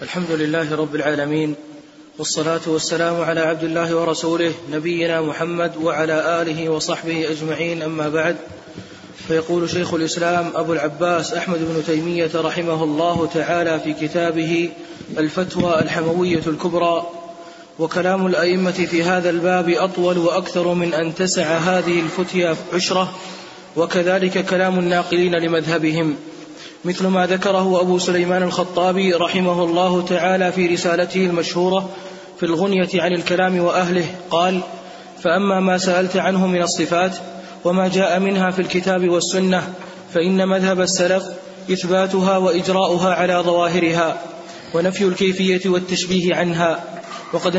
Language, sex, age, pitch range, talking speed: Arabic, male, 20-39, 165-185 Hz, 115 wpm